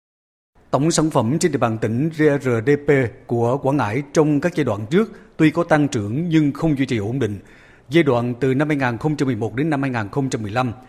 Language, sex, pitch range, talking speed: Vietnamese, male, 120-155 Hz, 185 wpm